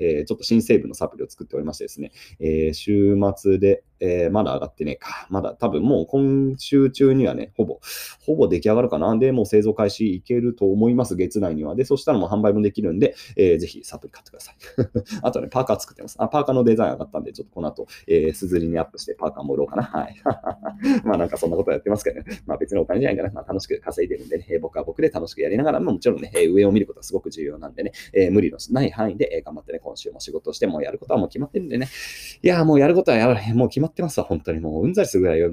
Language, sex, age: Japanese, male, 30-49